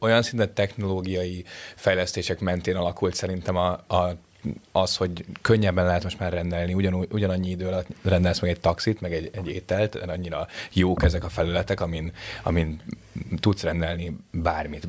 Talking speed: 155 wpm